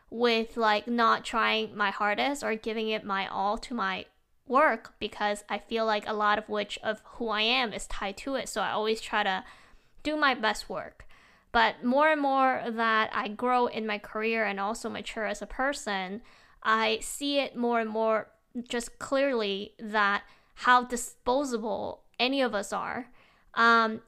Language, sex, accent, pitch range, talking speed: English, female, American, 210-240 Hz, 175 wpm